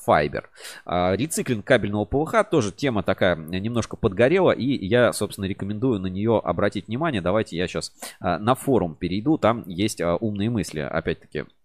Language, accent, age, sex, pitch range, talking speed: Russian, native, 30-49, male, 95-135 Hz, 145 wpm